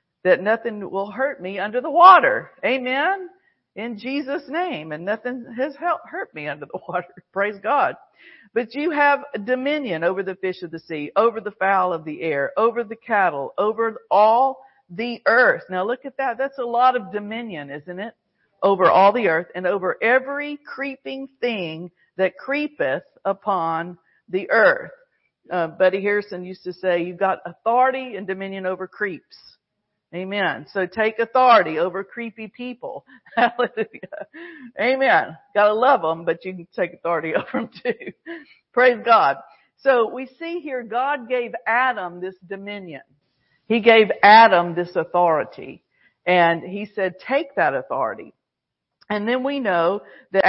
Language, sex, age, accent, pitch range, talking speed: English, female, 50-69, American, 185-255 Hz, 155 wpm